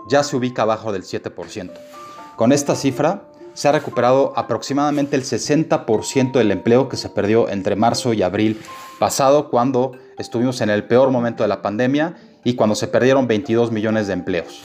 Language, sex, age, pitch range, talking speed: Spanish, male, 30-49, 110-145 Hz, 170 wpm